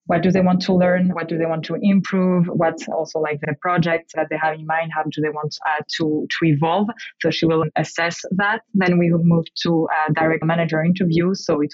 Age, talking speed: 20-39, 235 wpm